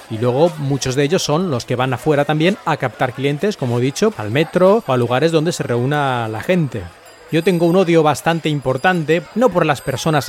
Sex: male